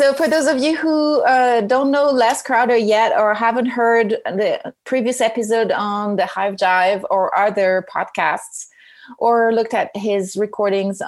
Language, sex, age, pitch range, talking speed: English, female, 30-49, 195-230 Hz, 160 wpm